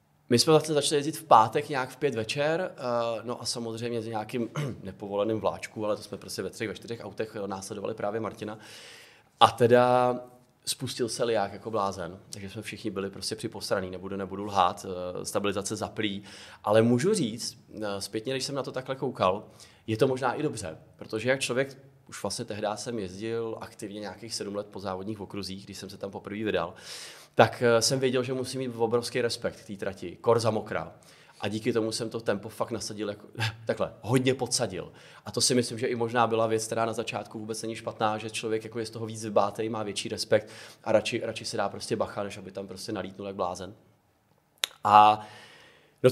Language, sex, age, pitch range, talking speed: Czech, male, 20-39, 105-120 Hz, 195 wpm